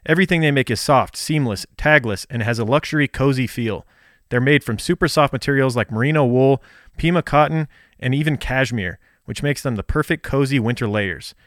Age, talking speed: 30-49, 185 wpm